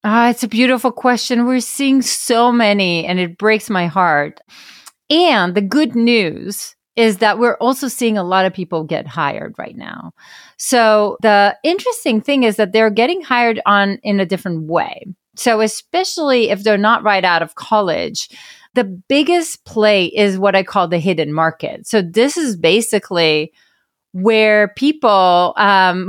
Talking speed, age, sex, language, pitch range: 165 wpm, 30-49, female, English, 195-250 Hz